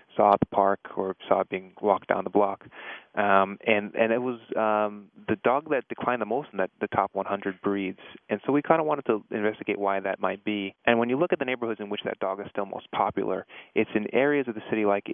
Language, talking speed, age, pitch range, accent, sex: English, 250 wpm, 20-39, 95-110 Hz, American, male